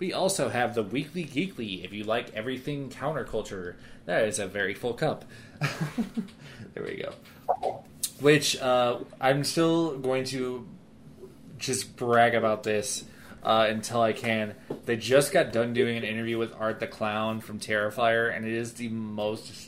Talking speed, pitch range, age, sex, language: 160 wpm, 110-140 Hz, 20-39, male, English